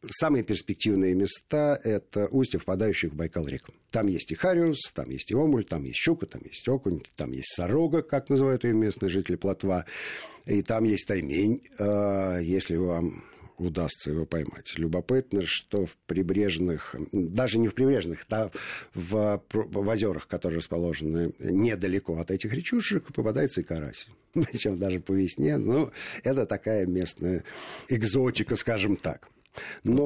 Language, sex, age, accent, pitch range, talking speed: Russian, male, 50-69, native, 90-130 Hz, 150 wpm